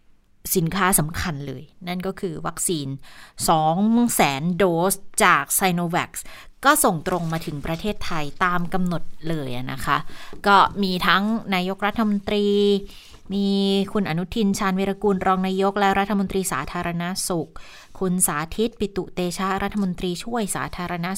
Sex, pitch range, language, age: female, 165-200 Hz, Thai, 20-39